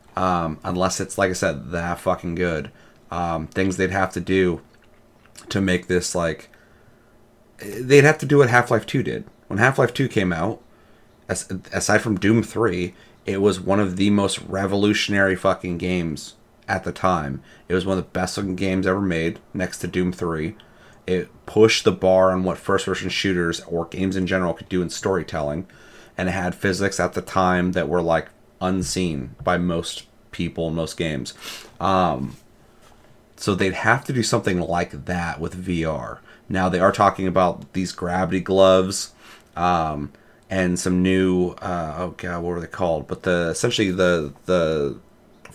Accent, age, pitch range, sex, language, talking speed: American, 30-49, 85-100 Hz, male, English, 170 wpm